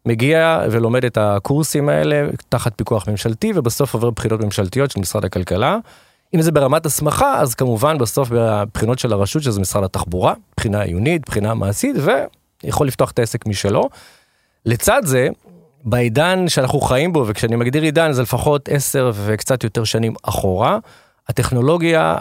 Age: 30-49